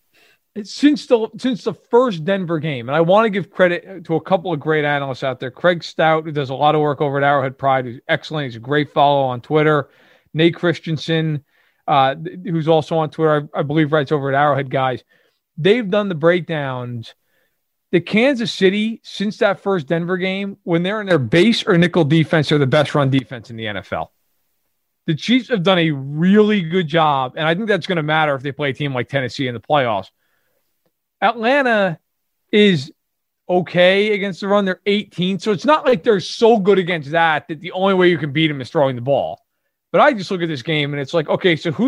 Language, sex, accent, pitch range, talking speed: English, male, American, 150-190 Hz, 215 wpm